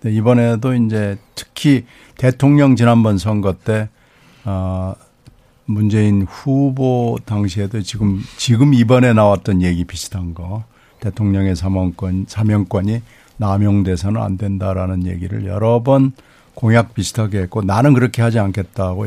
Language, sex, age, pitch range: Korean, male, 60-79, 95-120 Hz